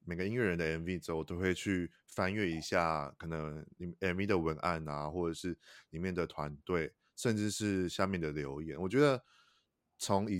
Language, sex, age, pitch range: Chinese, male, 20-39, 80-100 Hz